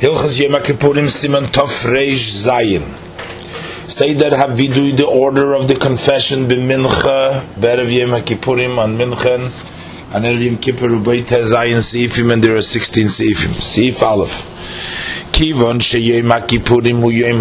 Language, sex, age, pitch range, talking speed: English, male, 30-49, 115-130 Hz, 145 wpm